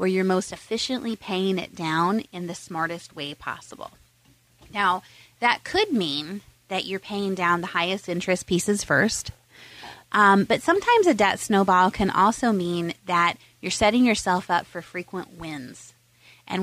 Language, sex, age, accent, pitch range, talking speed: English, female, 30-49, American, 170-200 Hz, 155 wpm